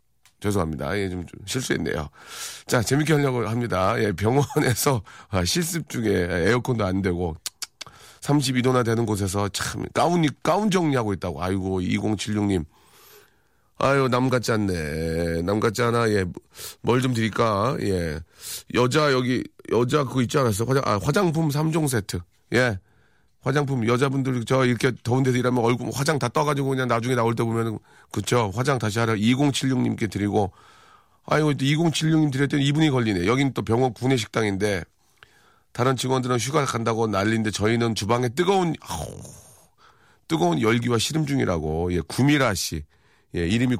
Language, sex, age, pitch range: Korean, male, 40-59, 105-135 Hz